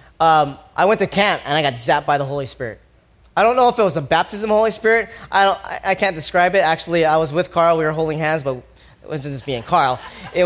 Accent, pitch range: American, 155-225 Hz